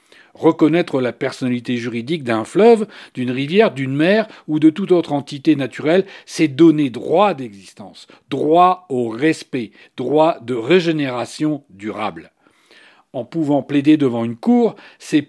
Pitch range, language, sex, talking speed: 140-190 Hz, French, male, 135 wpm